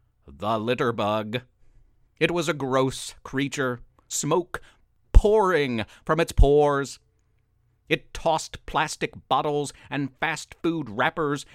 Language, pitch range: English, 110-160 Hz